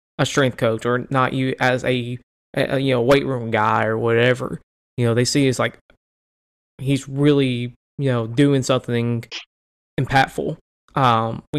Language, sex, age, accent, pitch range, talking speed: English, male, 20-39, American, 115-135 Hz, 155 wpm